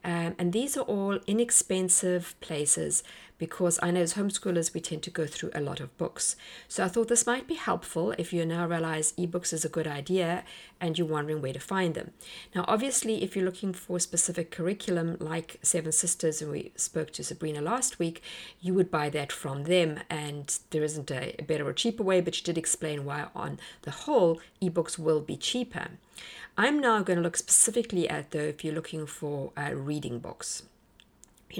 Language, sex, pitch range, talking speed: English, female, 160-190 Hz, 200 wpm